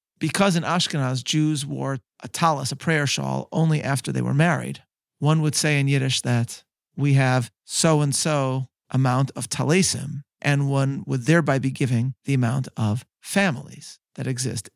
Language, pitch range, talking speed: English, 130-155 Hz, 160 wpm